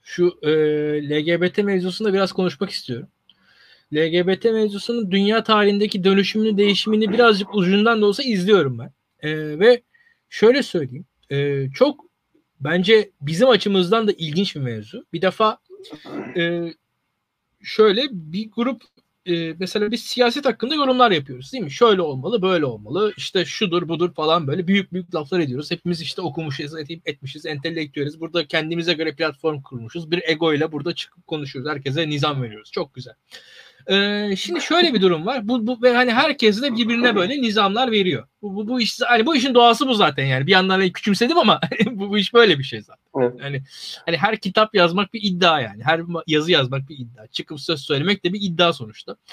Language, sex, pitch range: Turkish, male, 155-220 Hz